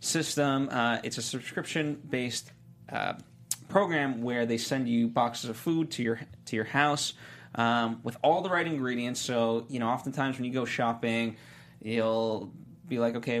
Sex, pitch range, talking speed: male, 115-140 Hz, 165 wpm